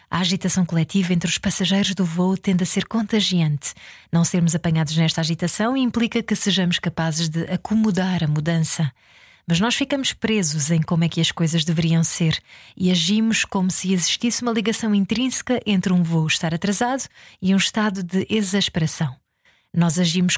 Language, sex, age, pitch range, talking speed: Portuguese, female, 20-39, 170-210 Hz, 170 wpm